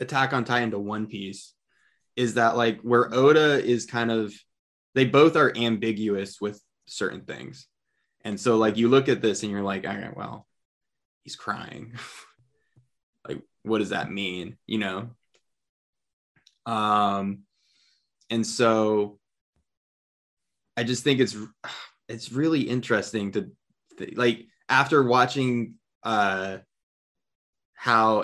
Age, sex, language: 20-39, male, English